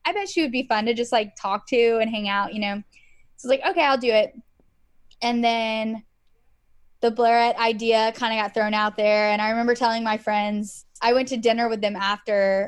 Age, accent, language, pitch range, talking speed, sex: 10-29, American, English, 215-255 Hz, 225 wpm, female